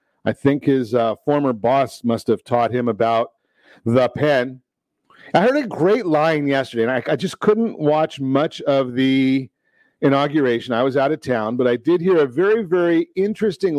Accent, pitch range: American, 125-175 Hz